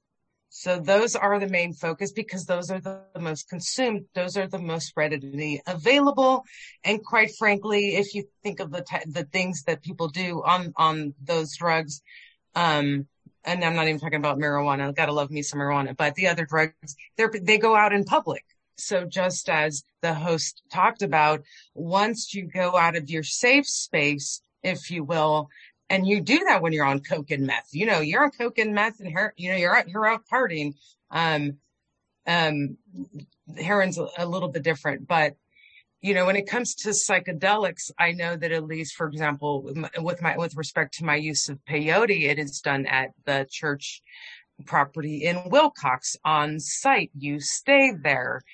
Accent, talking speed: American, 185 wpm